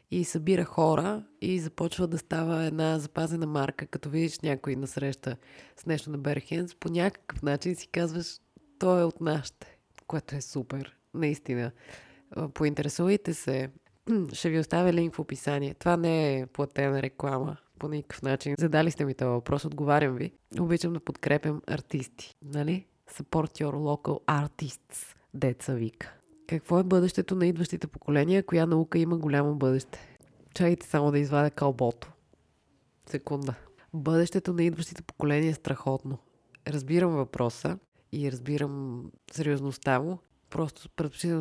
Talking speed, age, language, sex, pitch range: 140 wpm, 20-39, Bulgarian, female, 140-165 Hz